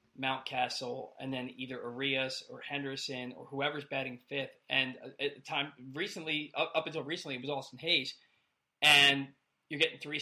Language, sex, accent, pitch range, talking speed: English, male, American, 135-155 Hz, 165 wpm